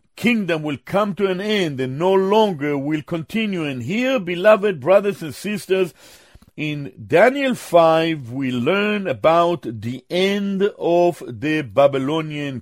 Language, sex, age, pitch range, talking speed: English, male, 50-69, 145-225 Hz, 135 wpm